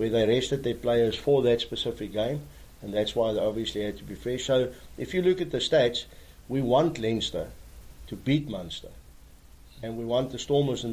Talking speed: 205 wpm